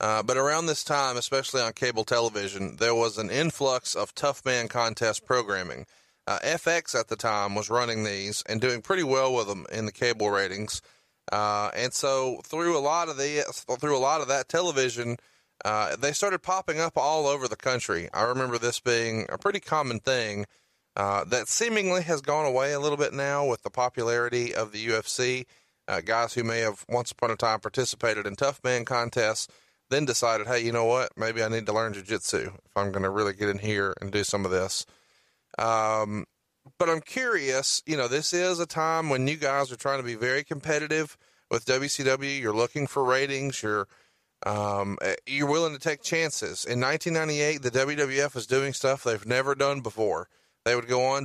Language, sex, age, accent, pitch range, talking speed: English, male, 30-49, American, 110-145 Hz, 200 wpm